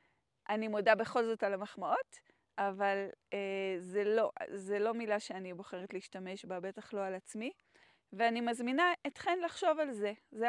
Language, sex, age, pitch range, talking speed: Hebrew, female, 30-49, 200-245 Hz, 160 wpm